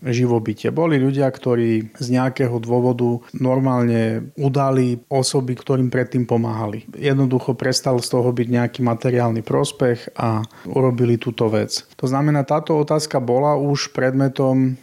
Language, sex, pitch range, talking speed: Slovak, male, 120-135 Hz, 130 wpm